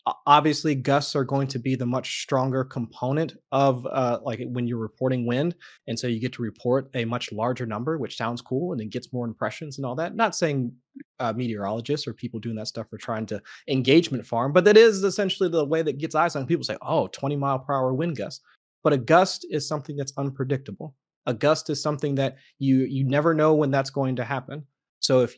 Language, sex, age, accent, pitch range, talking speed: English, male, 30-49, American, 125-145 Hz, 220 wpm